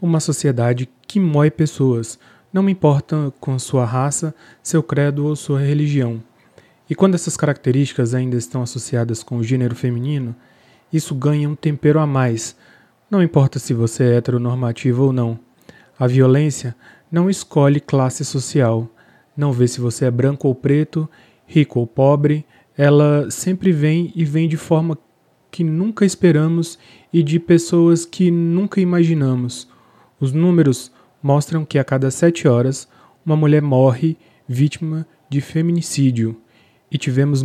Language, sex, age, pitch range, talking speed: Portuguese, male, 20-39, 125-160 Hz, 145 wpm